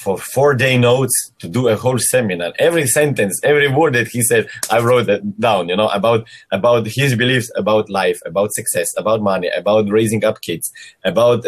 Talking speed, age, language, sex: 195 wpm, 30-49, English, male